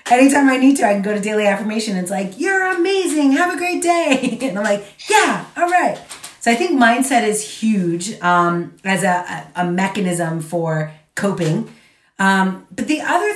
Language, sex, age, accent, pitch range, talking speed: Polish, female, 30-49, American, 180-225 Hz, 185 wpm